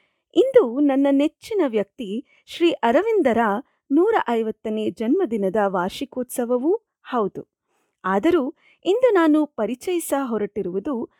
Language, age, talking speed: Kannada, 30-49, 85 wpm